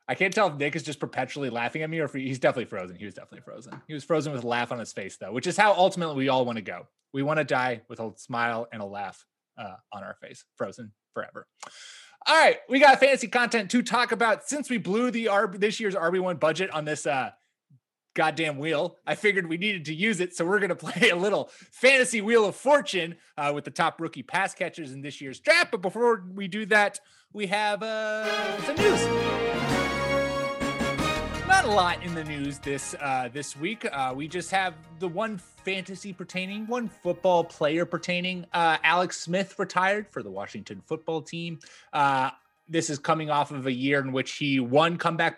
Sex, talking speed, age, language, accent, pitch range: male, 210 wpm, 20-39, English, American, 135-200 Hz